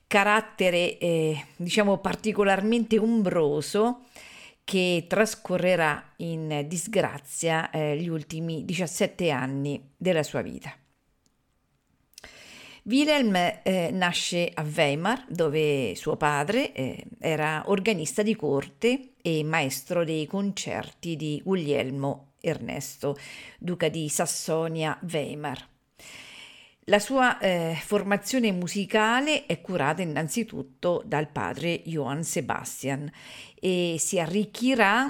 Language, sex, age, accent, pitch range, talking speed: Italian, female, 50-69, native, 155-205 Hz, 95 wpm